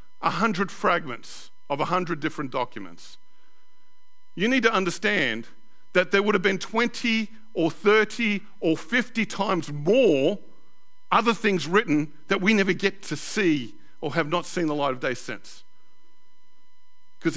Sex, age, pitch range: male, 50-69, 145-220 Hz